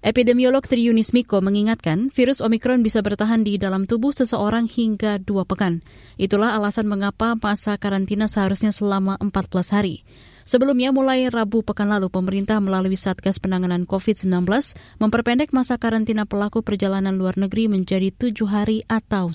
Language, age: Indonesian, 20-39